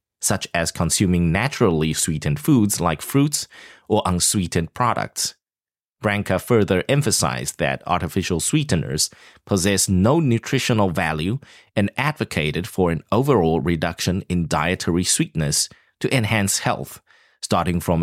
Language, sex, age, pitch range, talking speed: English, male, 30-49, 85-120 Hz, 115 wpm